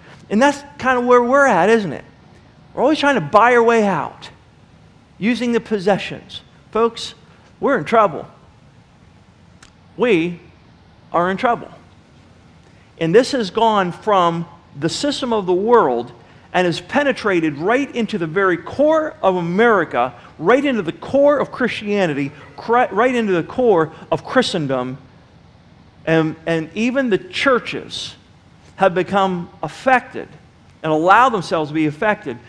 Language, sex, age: English, male, 40-59